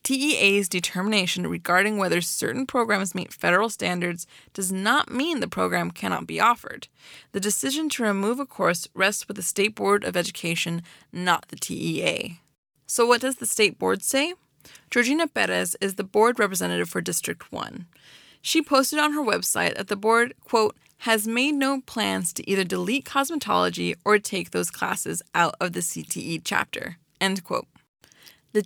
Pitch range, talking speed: 175-240 Hz, 165 wpm